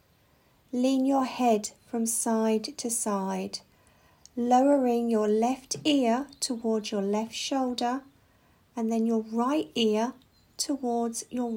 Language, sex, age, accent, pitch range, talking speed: English, female, 50-69, British, 205-255 Hz, 115 wpm